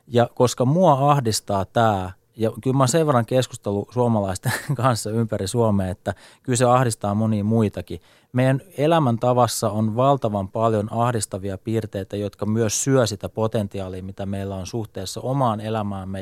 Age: 30-49